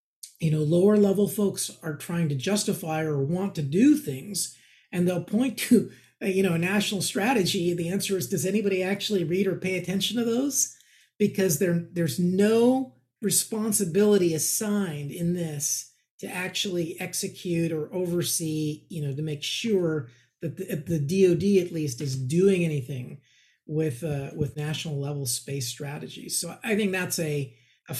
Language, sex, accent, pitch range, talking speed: English, male, American, 150-195 Hz, 160 wpm